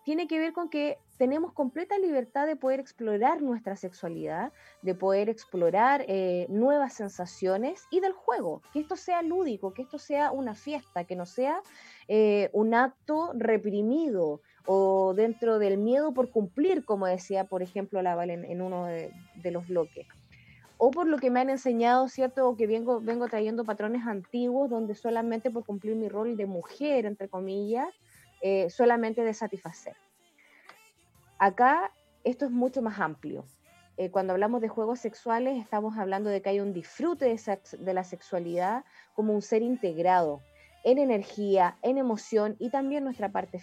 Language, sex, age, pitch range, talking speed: Spanish, female, 20-39, 195-270 Hz, 165 wpm